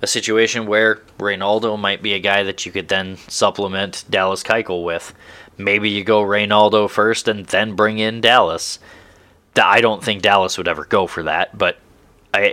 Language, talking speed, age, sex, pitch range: English, 180 wpm, 20-39, male, 100-120 Hz